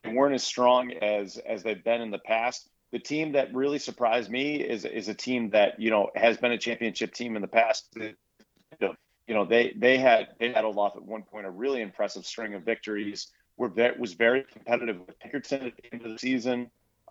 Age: 40-59